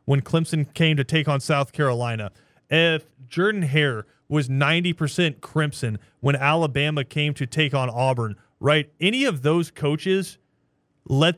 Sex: male